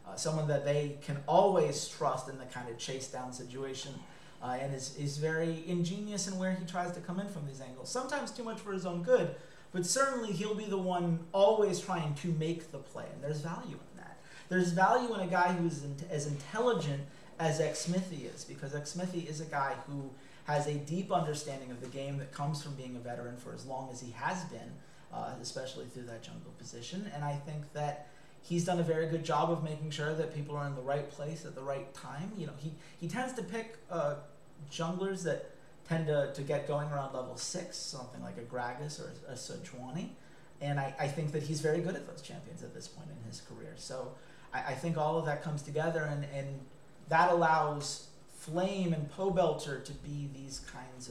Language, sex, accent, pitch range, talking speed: English, male, American, 140-175 Hz, 215 wpm